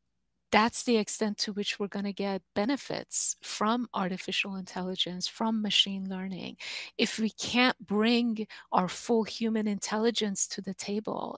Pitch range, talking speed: 195-225 Hz, 140 wpm